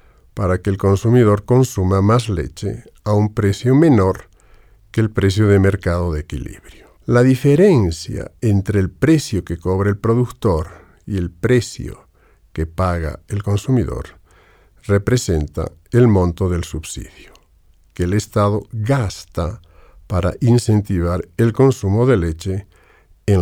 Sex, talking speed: male, 130 wpm